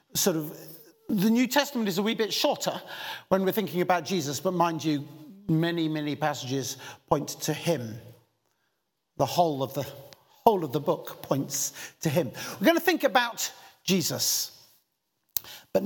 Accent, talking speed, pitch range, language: British, 160 wpm, 145-235 Hz, English